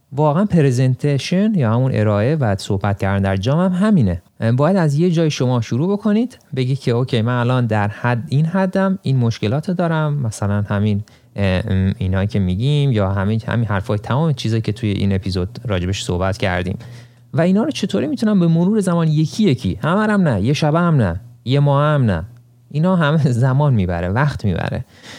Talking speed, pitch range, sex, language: 175 wpm, 105-150 Hz, male, Persian